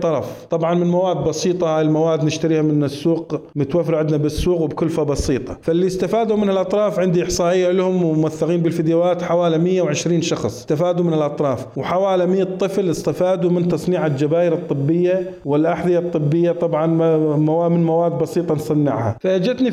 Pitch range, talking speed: 160-190 Hz, 140 wpm